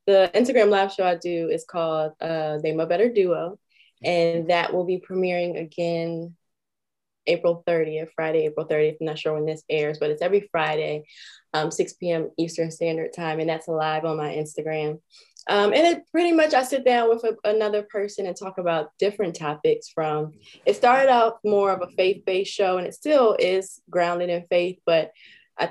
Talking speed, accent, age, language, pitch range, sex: 185 wpm, American, 20-39, English, 160-200 Hz, female